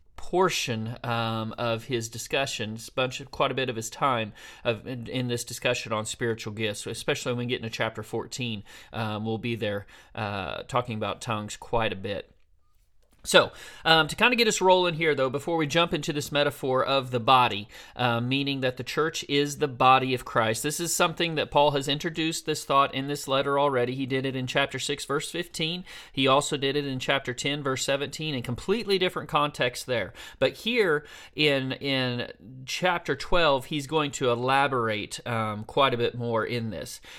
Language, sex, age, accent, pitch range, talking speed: English, male, 40-59, American, 120-150 Hz, 195 wpm